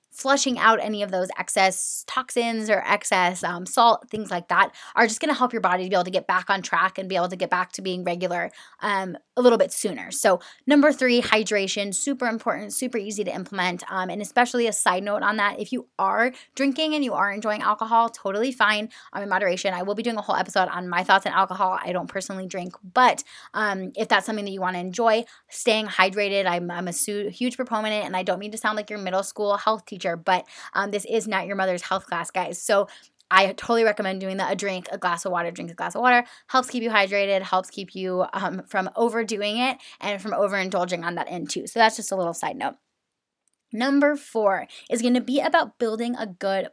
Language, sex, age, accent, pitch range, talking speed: English, female, 20-39, American, 185-230 Hz, 235 wpm